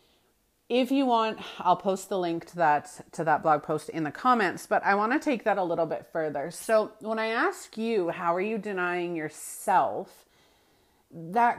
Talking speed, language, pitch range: 190 wpm, English, 160-215 Hz